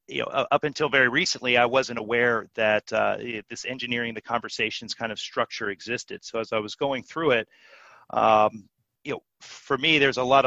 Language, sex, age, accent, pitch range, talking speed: English, male, 30-49, American, 115-140 Hz, 195 wpm